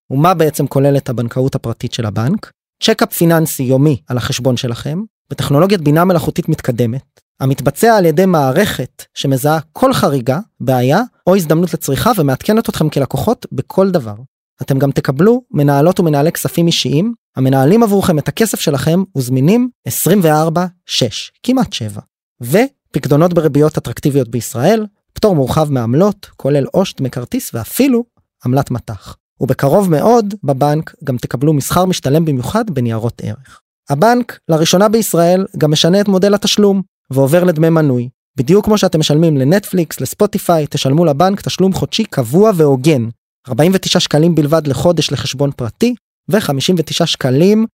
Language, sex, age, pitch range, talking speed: Hebrew, male, 20-39, 135-190 Hz, 130 wpm